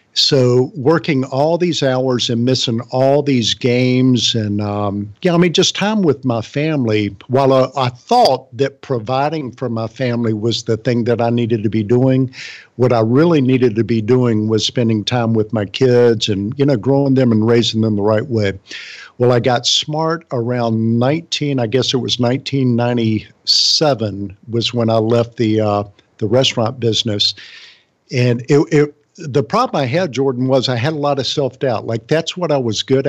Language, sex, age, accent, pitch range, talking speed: English, male, 50-69, American, 115-135 Hz, 185 wpm